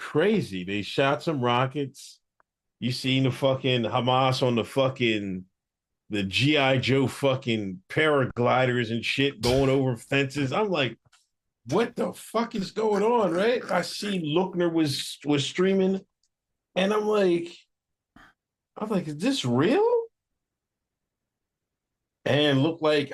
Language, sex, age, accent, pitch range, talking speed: English, male, 50-69, American, 110-185 Hz, 125 wpm